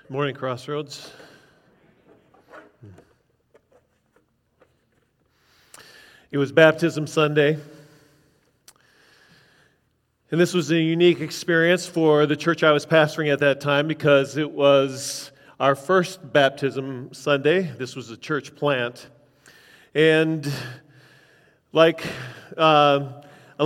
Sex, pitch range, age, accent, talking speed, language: male, 145-180 Hz, 40-59, American, 95 wpm, English